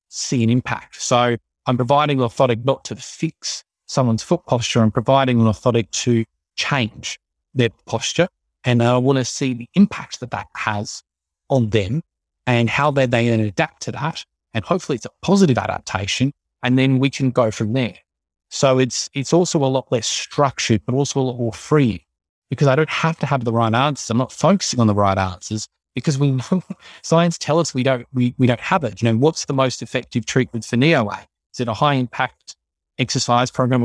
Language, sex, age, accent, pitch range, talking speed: English, male, 30-49, Australian, 115-140 Hz, 200 wpm